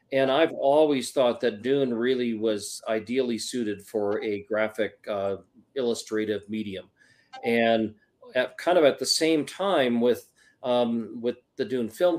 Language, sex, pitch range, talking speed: English, male, 110-145 Hz, 150 wpm